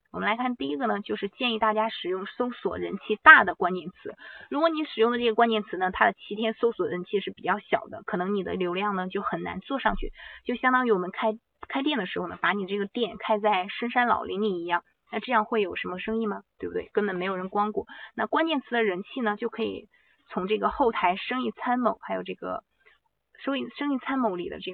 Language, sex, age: Chinese, female, 20-39